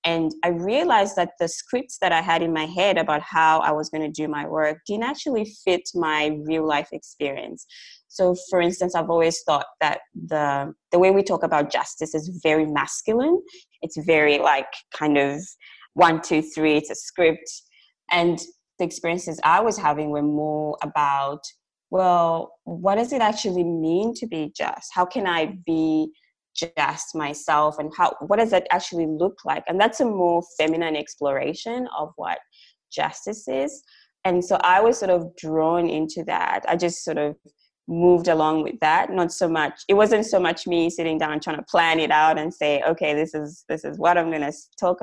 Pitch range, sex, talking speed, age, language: 155-180 Hz, female, 190 wpm, 20-39, English